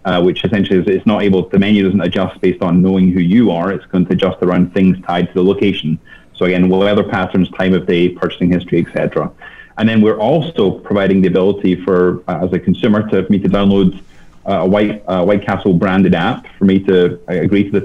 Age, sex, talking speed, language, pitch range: 30-49, male, 230 wpm, English, 90-100 Hz